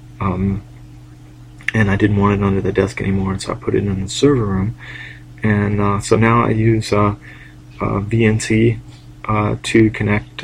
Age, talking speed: 30-49, 170 wpm